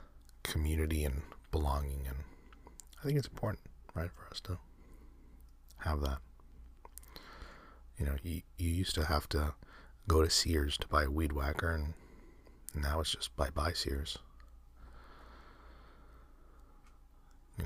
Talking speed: 135 wpm